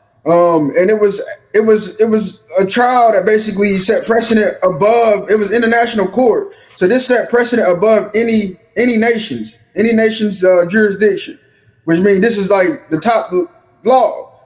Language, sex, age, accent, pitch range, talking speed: English, male, 20-39, American, 180-230 Hz, 160 wpm